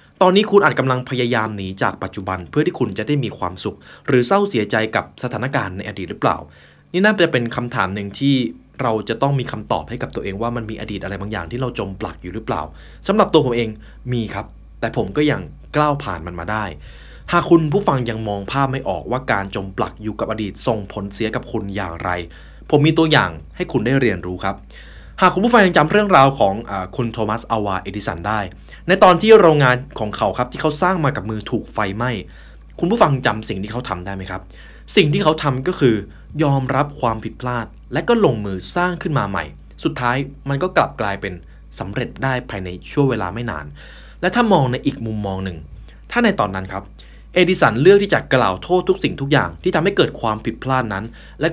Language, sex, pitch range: Thai, male, 95-140 Hz